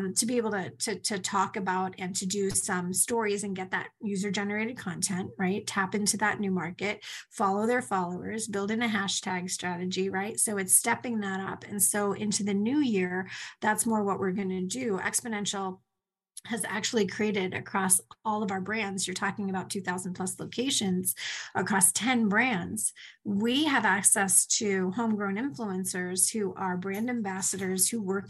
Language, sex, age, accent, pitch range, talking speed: English, female, 30-49, American, 190-220 Hz, 170 wpm